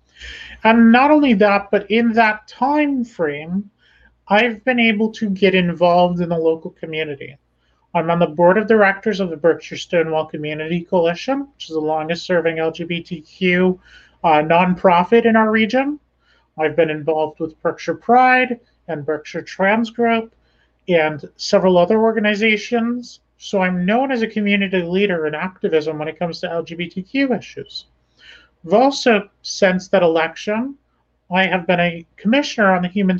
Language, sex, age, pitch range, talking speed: English, male, 30-49, 170-220 Hz, 150 wpm